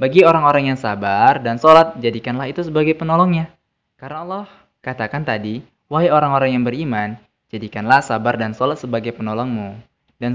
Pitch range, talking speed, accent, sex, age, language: 110-145 Hz, 145 wpm, native, male, 20-39, Indonesian